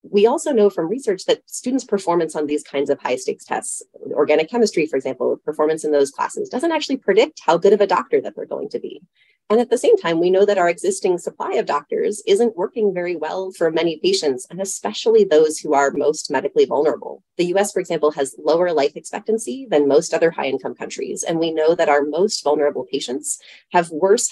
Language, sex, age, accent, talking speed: English, female, 30-49, American, 210 wpm